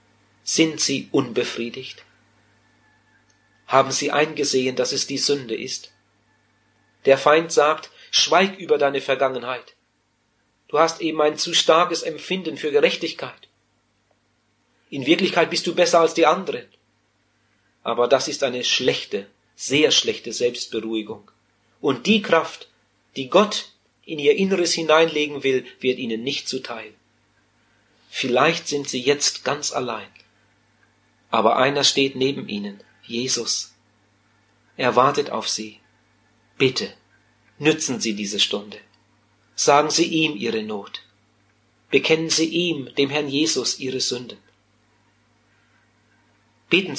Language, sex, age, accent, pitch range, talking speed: German, male, 40-59, German, 110-145 Hz, 115 wpm